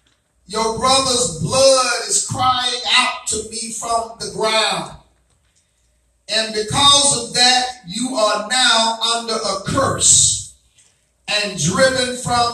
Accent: American